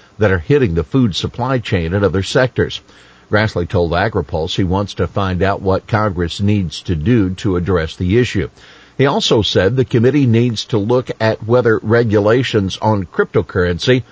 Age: 50-69